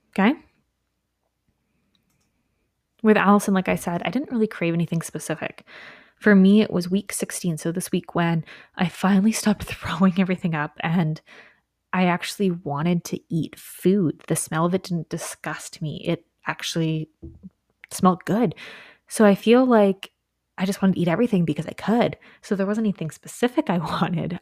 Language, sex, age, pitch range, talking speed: English, female, 20-39, 165-210 Hz, 160 wpm